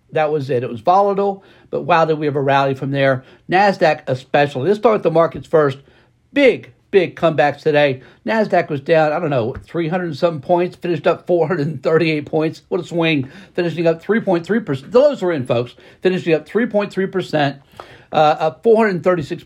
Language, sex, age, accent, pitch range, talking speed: English, male, 60-79, American, 145-180 Hz, 175 wpm